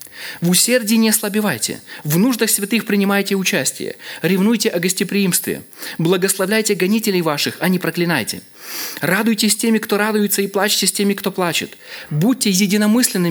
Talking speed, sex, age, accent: 140 wpm, male, 20-39, native